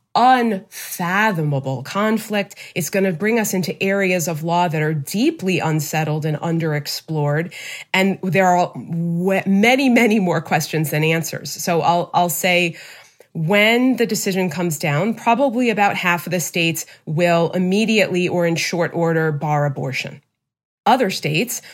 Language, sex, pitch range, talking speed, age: English, female, 165-205 Hz, 140 wpm, 30-49